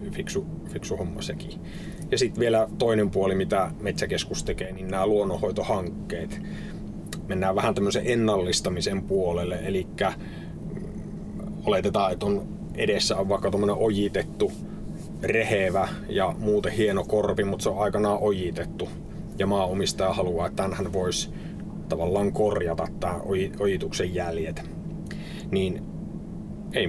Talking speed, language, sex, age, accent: 115 wpm, Finnish, male, 30-49, native